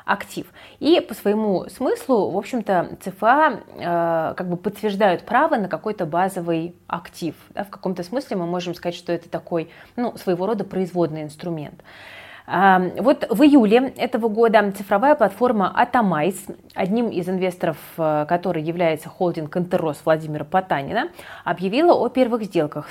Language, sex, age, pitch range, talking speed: Russian, female, 20-39, 170-215 Hz, 140 wpm